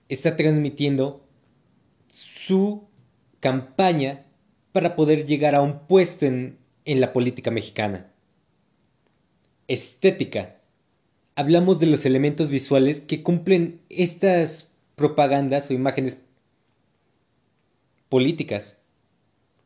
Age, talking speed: 20-39, 85 wpm